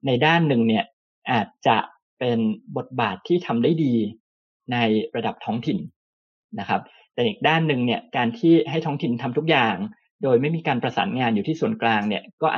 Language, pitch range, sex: Thai, 115-175 Hz, male